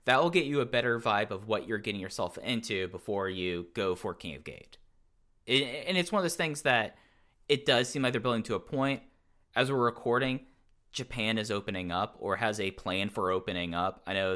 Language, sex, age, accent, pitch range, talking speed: English, male, 10-29, American, 90-120 Hz, 215 wpm